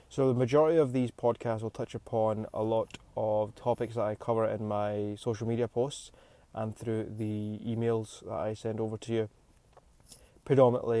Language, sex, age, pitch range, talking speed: English, male, 20-39, 105-120 Hz, 175 wpm